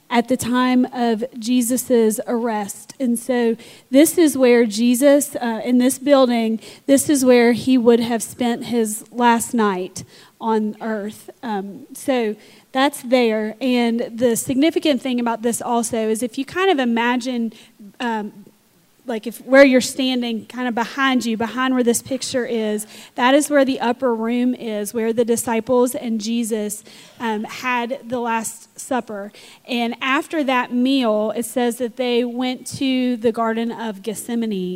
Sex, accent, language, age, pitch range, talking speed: female, American, English, 30-49, 225-250 Hz, 155 wpm